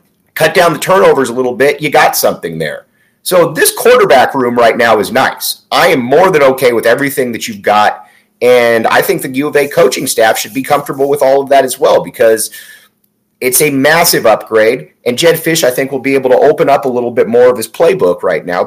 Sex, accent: male, American